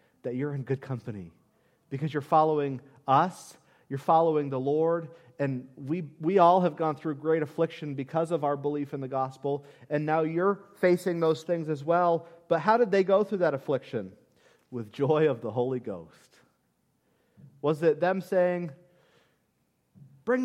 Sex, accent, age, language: male, American, 40-59, English